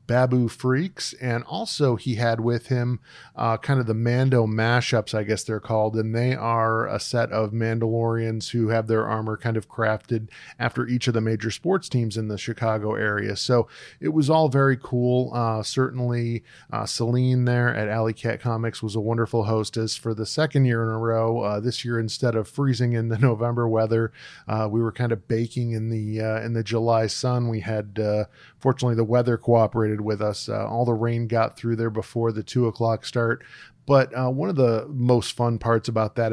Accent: American